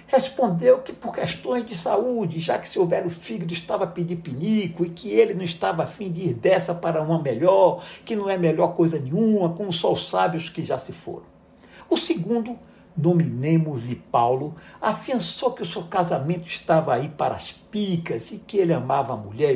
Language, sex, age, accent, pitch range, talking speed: Portuguese, male, 60-79, Brazilian, 165-215 Hz, 195 wpm